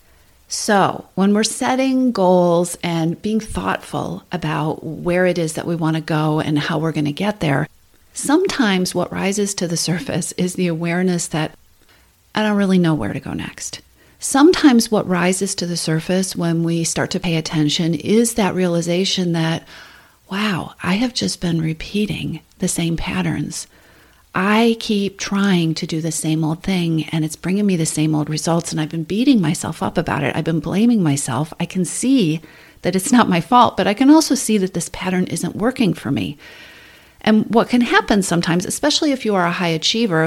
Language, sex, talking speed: English, female, 190 wpm